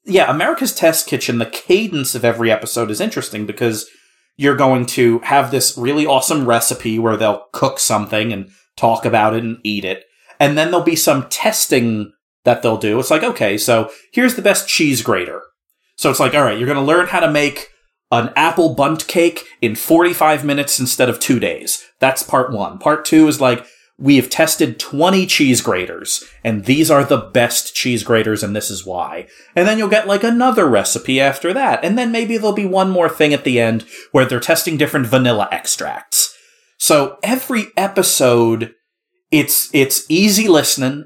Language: English